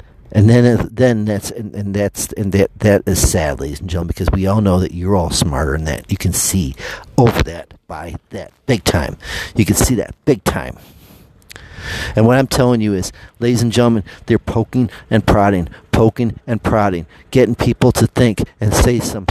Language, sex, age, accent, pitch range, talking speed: English, male, 50-69, American, 95-120 Hz, 195 wpm